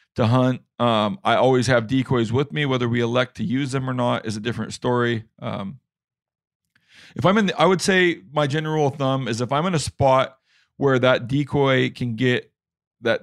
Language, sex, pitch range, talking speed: English, male, 115-140 Hz, 200 wpm